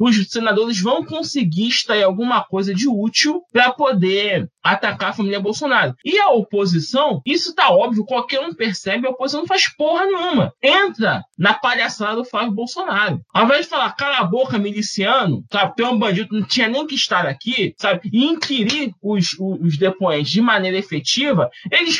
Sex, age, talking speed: male, 20-39, 180 wpm